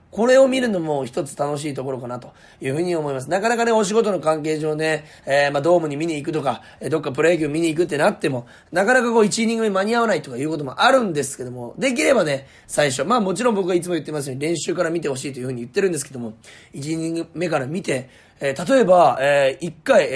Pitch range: 145-215 Hz